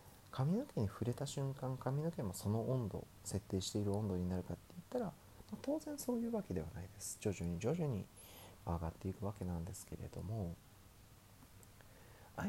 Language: Japanese